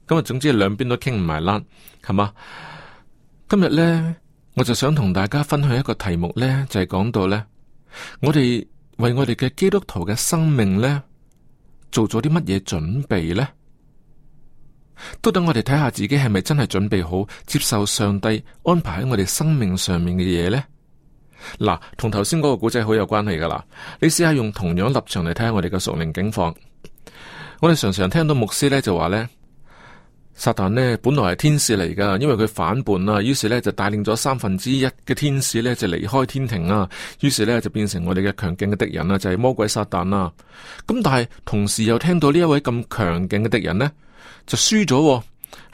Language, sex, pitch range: Chinese, male, 105-145 Hz